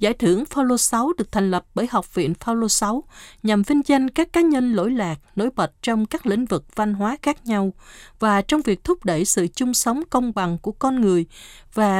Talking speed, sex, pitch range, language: 225 wpm, female, 185-260 Hz, Vietnamese